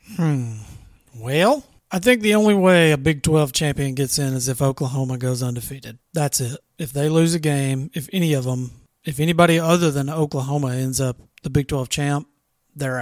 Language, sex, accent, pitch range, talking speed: English, male, American, 130-160 Hz, 190 wpm